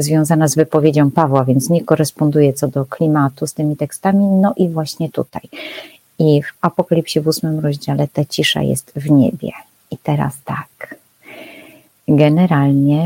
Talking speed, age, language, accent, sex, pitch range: 145 wpm, 30-49, Polish, native, female, 145-170 Hz